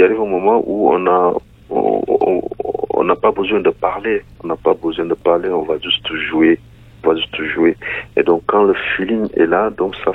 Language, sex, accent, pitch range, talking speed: French, male, French, 330-425 Hz, 220 wpm